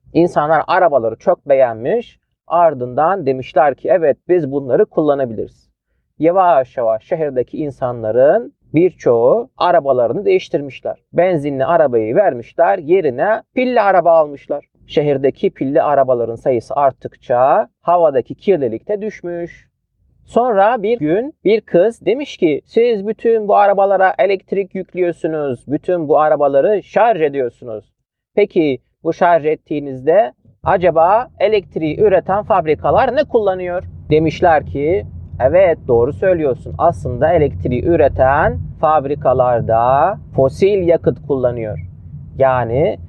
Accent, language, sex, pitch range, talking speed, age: native, Turkish, male, 135-195 Hz, 105 wpm, 40-59